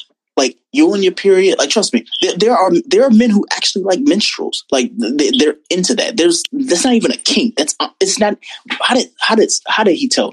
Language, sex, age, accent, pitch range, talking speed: English, male, 20-39, American, 225-365 Hz, 225 wpm